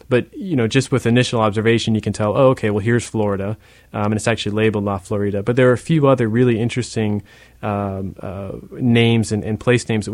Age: 20-39